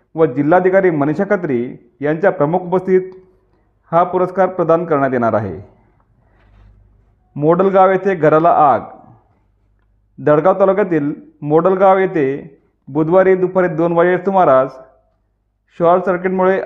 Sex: male